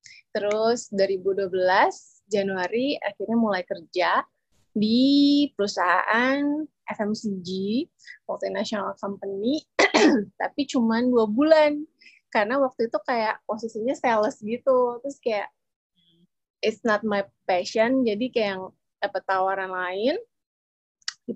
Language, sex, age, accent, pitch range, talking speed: Indonesian, female, 20-39, native, 195-260 Hz, 100 wpm